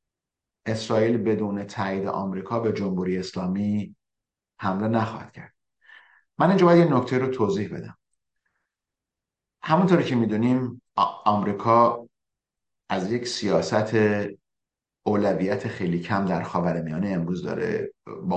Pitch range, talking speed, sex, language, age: 95-120 Hz, 110 wpm, male, Persian, 50-69